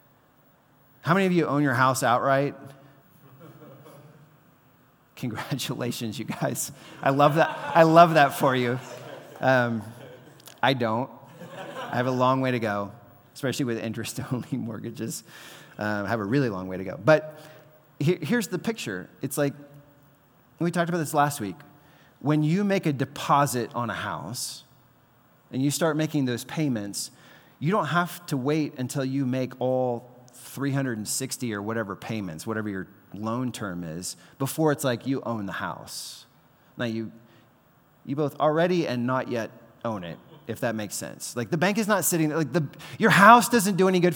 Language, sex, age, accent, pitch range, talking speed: English, male, 30-49, American, 120-155 Hz, 165 wpm